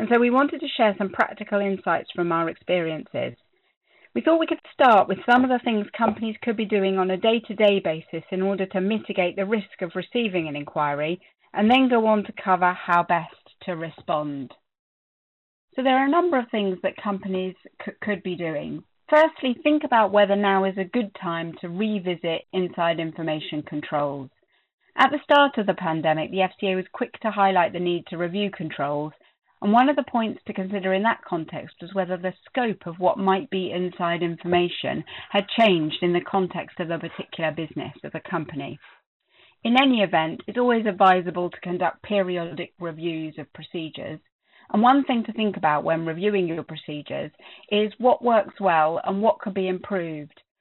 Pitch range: 170-215 Hz